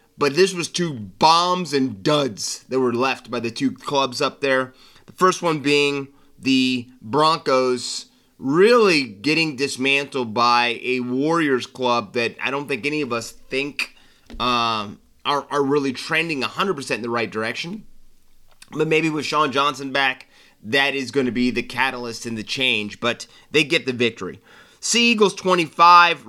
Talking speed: 160 wpm